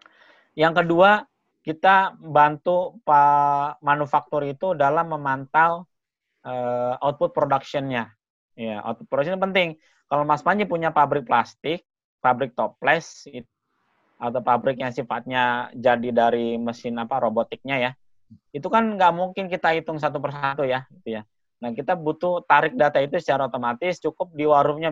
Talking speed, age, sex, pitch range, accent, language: 140 wpm, 20-39, male, 125-155 Hz, native, Indonesian